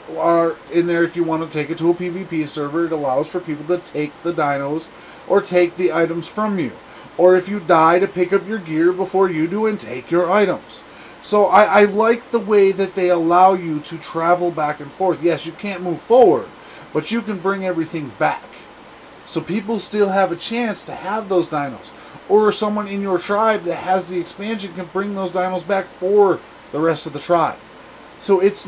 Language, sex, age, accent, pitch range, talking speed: English, male, 30-49, American, 160-195 Hz, 210 wpm